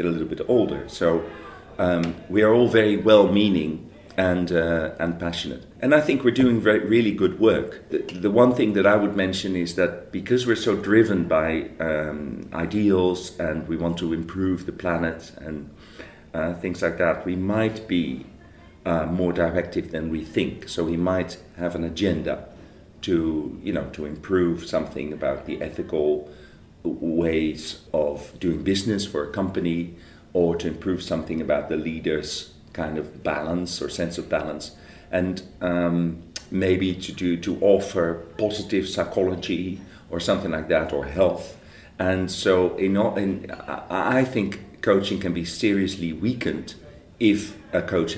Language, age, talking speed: English, 40-59, 160 wpm